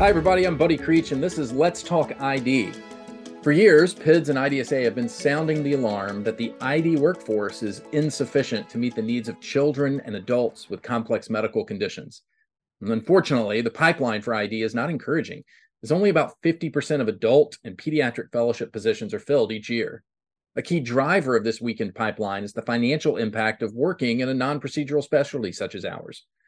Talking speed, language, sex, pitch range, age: 185 wpm, English, male, 120-160 Hz, 40-59